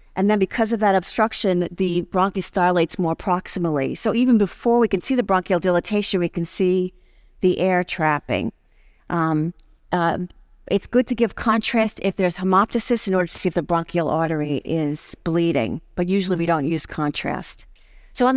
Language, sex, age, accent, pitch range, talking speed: English, female, 50-69, American, 170-205 Hz, 175 wpm